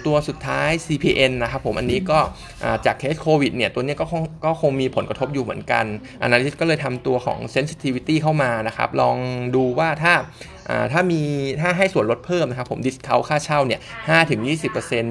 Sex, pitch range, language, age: male, 120-150 Hz, Thai, 20-39